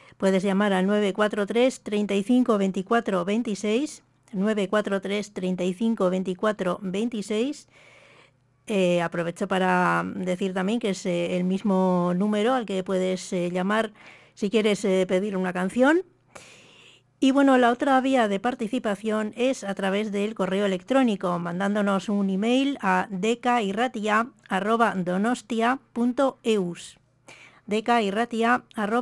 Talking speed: 105 wpm